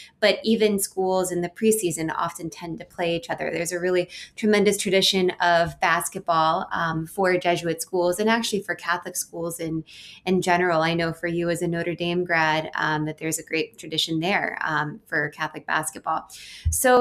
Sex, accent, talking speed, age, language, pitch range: female, American, 185 wpm, 20-39, English, 170-190 Hz